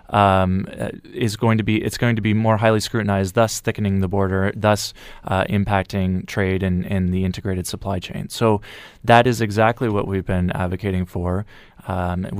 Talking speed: 180 wpm